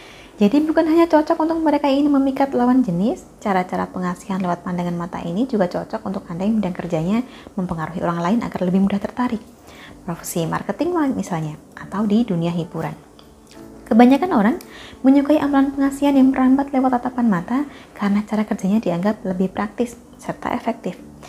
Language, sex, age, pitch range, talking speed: Indonesian, female, 20-39, 185-255 Hz, 155 wpm